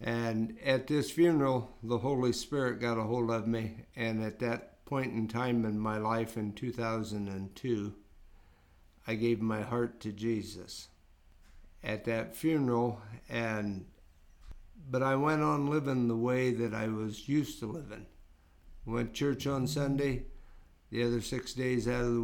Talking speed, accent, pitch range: 155 wpm, American, 105-120 Hz